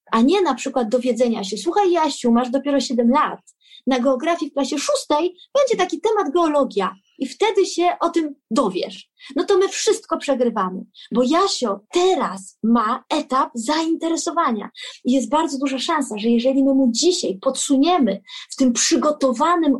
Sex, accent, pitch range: female, native, 250-330 Hz